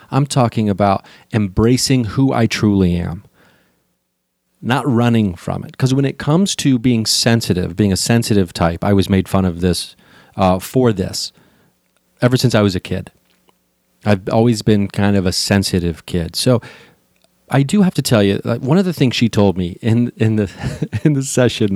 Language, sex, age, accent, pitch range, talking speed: English, male, 40-59, American, 95-120 Hz, 180 wpm